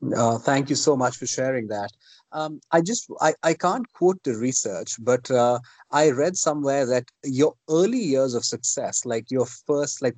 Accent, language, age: Indian, English, 30-49